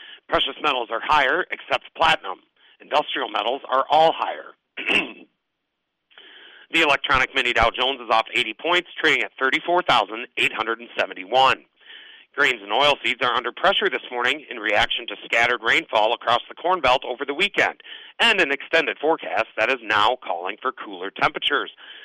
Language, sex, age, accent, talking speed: English, male, 40-59, American, 150 wpm